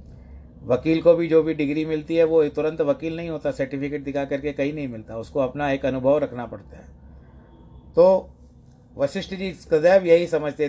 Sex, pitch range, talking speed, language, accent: male, 105-155 Hz, 175 wpm, Hindi, native